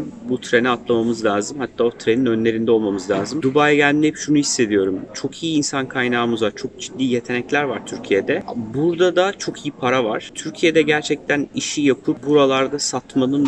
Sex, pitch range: male, 120-140 Hz